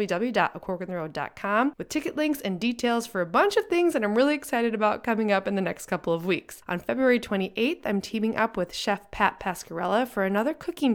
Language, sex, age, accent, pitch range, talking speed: English, female, 20-39, American, 185-255 Hz, 205 wpm